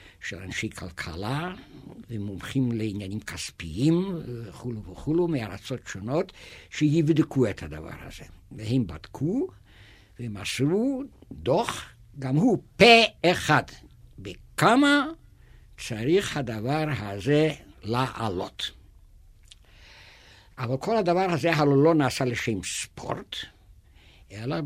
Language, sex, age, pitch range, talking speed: Hebrew, male, 60-79, 100-170 Hz, 90 wpm